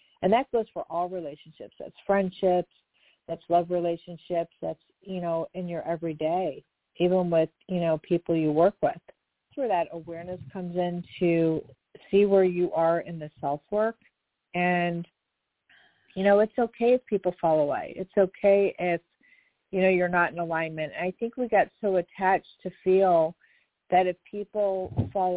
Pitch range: 170-200 Hz